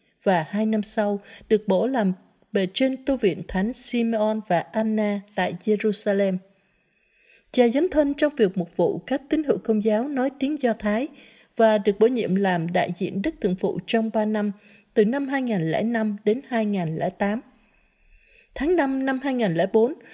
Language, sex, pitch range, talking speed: Vietnamese, female, 195-240 Hz, 165 wpm